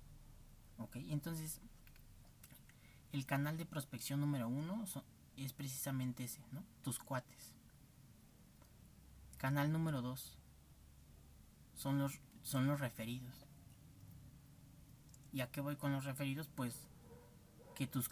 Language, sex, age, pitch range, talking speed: Spanish, male, 30-49, 120-140 Hz, 110 wpm